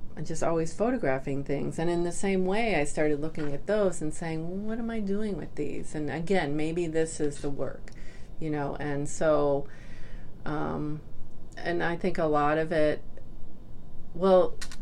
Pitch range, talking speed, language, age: 140-170 Hz, 170 wpm, English, 40-59